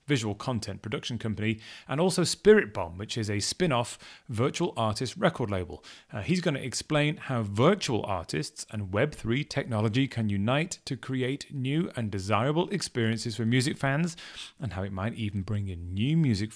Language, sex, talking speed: English, male, 170 wpm